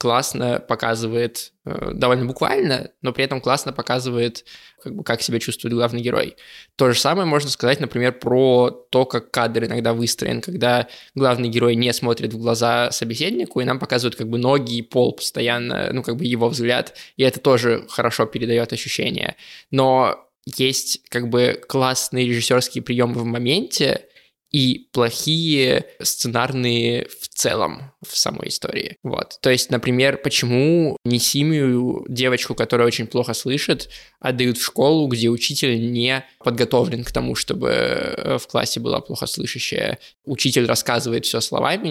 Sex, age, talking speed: male, 20-39, 145 wpm